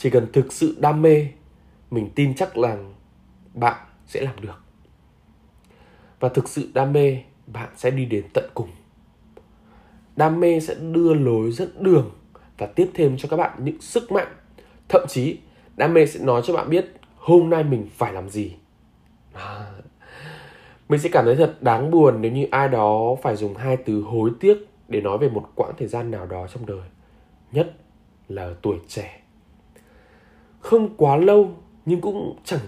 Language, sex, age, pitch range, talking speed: Vietnamese, male, 10-29, 105-160 Hz, 175 wpm